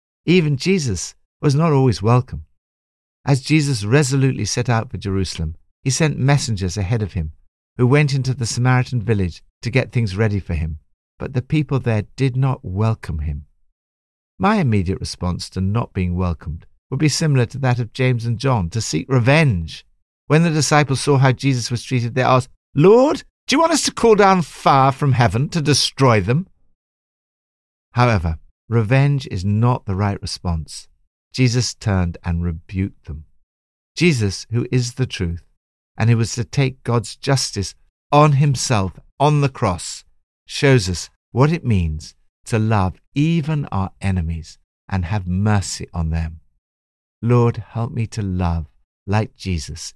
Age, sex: 60-79, male